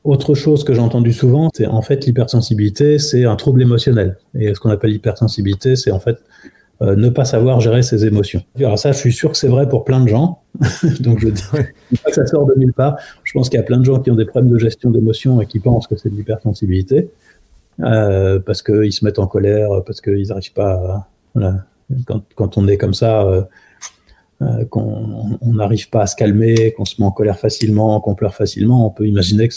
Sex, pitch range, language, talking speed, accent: male, 105-125 Hz, French, 225 wpm, French